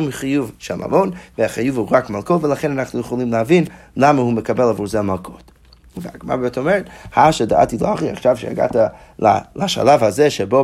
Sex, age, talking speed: male, 30-49, 170 wpm